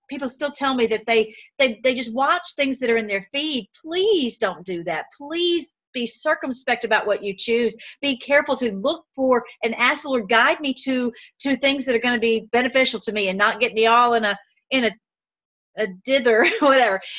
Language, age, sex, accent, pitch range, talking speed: English, 40-59, female, American, 215-270 Hz, 215 wpm